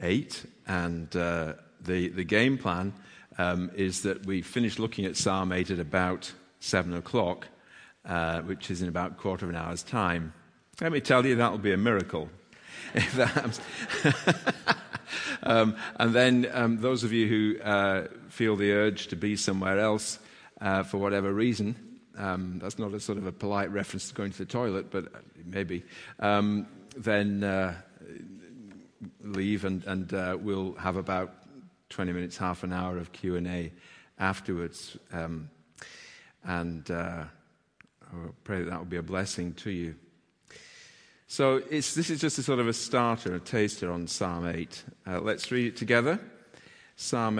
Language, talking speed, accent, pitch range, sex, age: English, 160 wpm, British, 90-110 Hz, male, 50-69